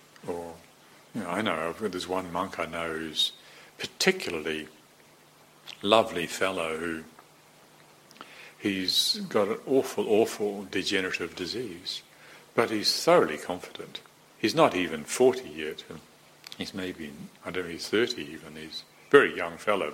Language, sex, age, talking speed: English, male, 60-79, 130 wpm